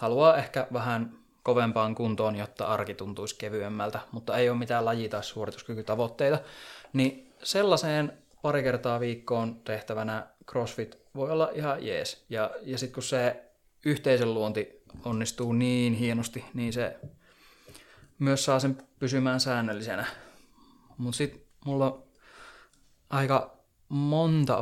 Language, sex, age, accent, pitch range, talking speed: Finnish, male, 20-39, native, 115-140 Hz, 120 wpm